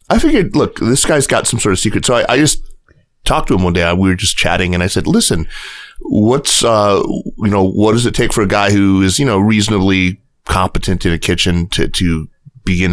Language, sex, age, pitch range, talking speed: English, male, 30-49, 85-105 Hz, 235 wpm